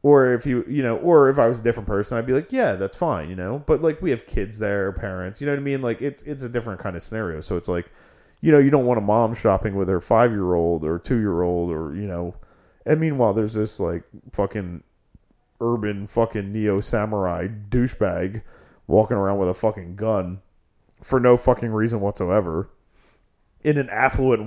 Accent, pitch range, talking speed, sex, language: American, 100-135 Hz, 205 wpm, male, English